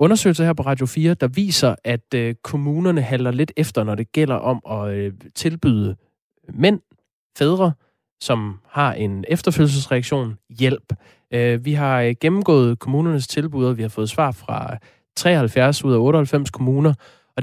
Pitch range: 110-145 Hz